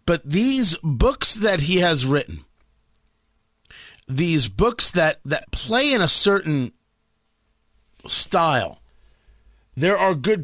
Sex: male